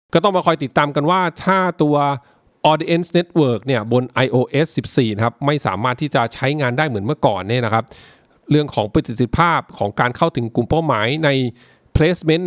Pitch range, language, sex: 115-150 Hz, English, male